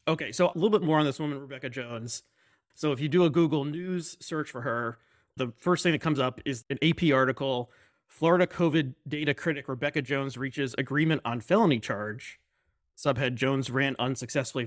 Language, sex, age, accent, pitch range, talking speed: English, male, 30-49, American, 135-175 Hz, 190 wpm